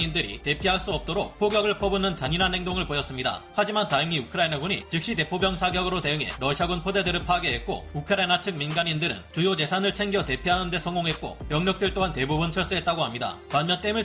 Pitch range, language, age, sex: 155-195 Hz, Korean, 30-49, male